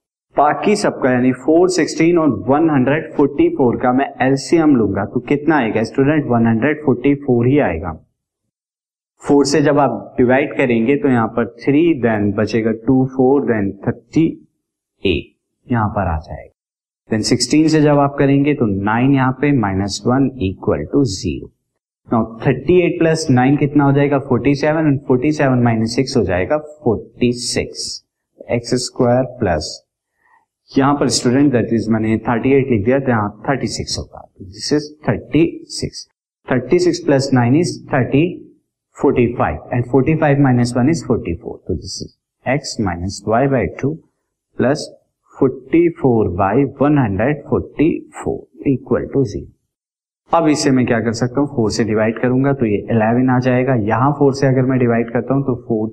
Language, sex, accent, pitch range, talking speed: Hindi, male, native, 115-145 Hz, 120 wpm